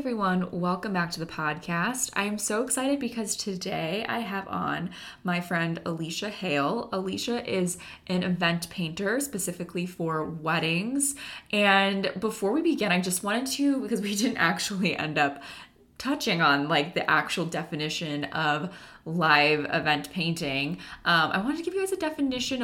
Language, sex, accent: English, female, American